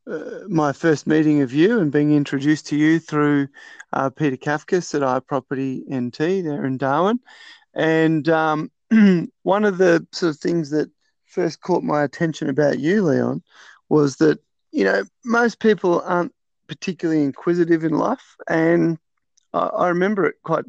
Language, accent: English, Australian